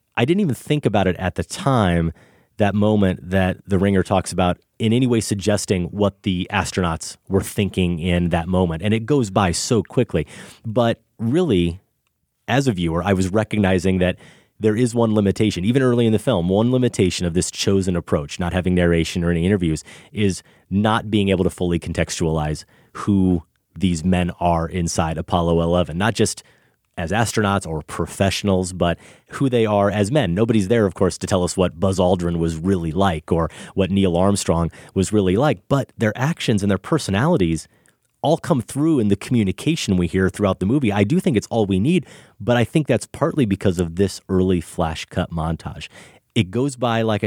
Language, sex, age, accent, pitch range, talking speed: English, male, 30-49, American, 90-110 Hz, 190 wpm